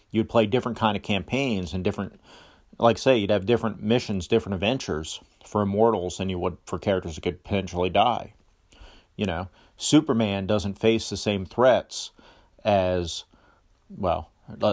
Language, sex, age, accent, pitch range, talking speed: English, male, 40-59, American, 90-110 Hz, 150 wpm